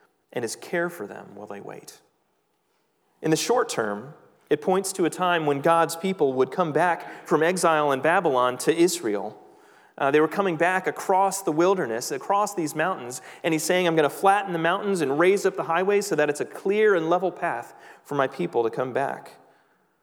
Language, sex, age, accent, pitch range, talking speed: English, male, 30-49, American, 155-210 Hz, 205 wpm